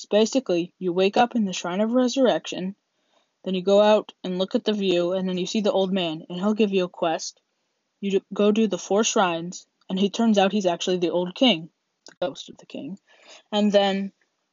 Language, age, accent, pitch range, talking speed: English, 10-29, American, 175-215 Hz, 220 wpm